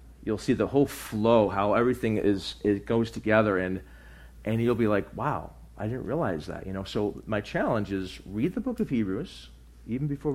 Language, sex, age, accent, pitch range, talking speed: English, male, 40-59, American, 85-115 Hz, 195 wpm